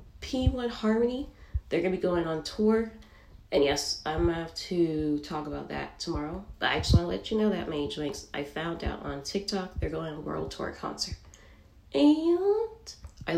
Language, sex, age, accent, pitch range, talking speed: English, female, 20-39, American, 150-215 Hz, 195 wpm